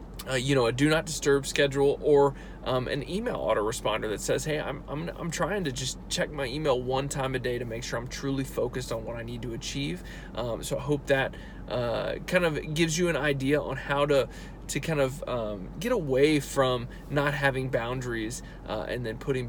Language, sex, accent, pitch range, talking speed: English, male, American, 130-155 Hz, 215 wpm